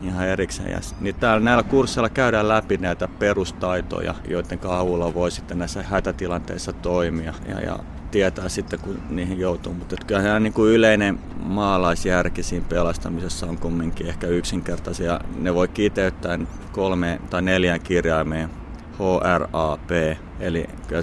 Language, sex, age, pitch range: Finnish, male, 30-49, 80-90 Hz